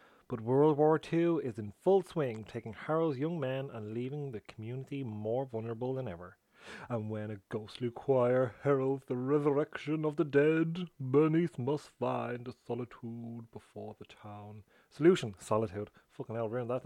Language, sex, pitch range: English, male, 110-145 Hz